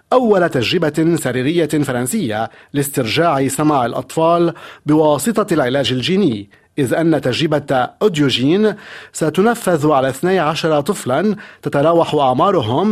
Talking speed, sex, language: 95 wpm, male, Arabic